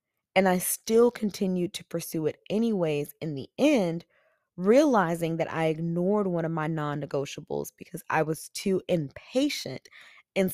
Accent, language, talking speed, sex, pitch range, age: American, English, 140 wpm, female, 160-205 Hz, 20-39